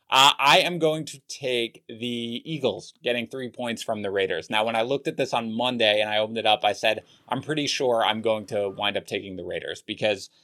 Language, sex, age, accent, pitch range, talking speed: English, male, 30-49, American, 110-140 Hz, 235 wpm